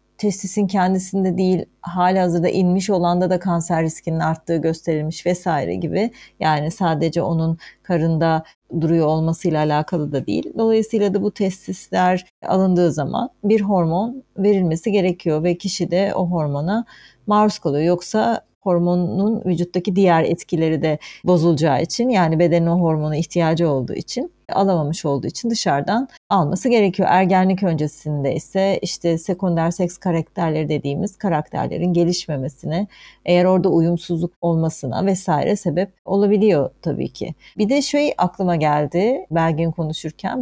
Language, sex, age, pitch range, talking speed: Turkish, female, 40-59, 165-200 Hz, 130 wpm